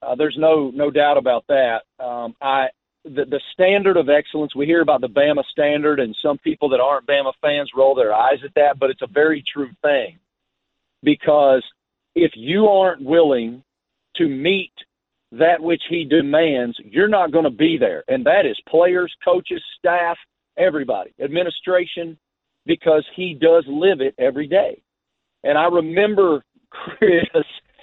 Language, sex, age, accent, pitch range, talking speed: English, male, 40-59, American, 145-190 Hz, 160 wpm